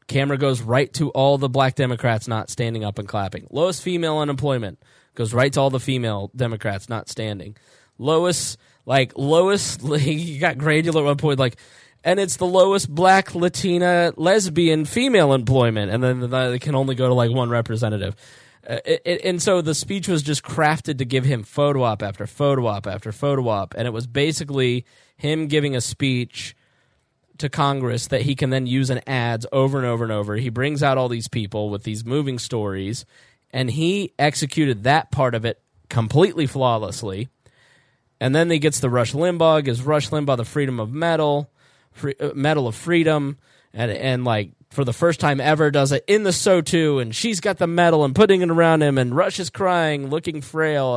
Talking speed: 190 wpm